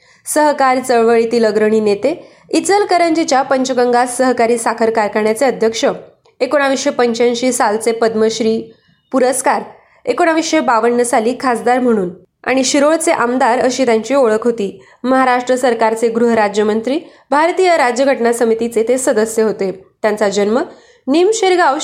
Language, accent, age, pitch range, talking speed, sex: Marathi, native, 20-39, 230-275 Hz, 105 wpm, female